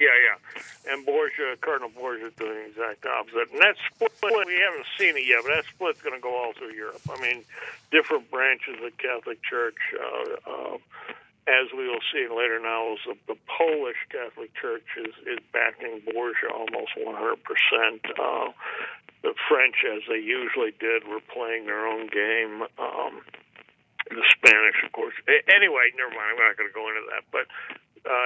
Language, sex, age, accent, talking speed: English, male, 60-79, American, 180 wpm